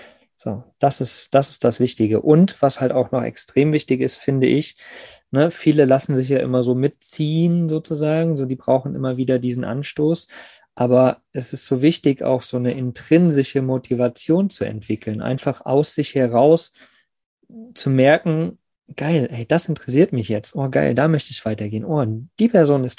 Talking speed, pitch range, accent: 175 wpm, 120-145 Hz, German